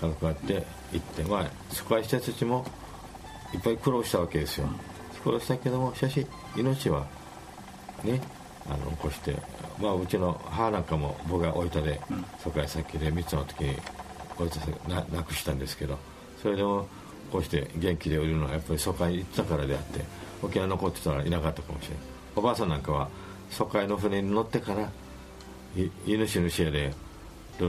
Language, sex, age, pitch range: Japanese, male, 50-69, 75-95 Hz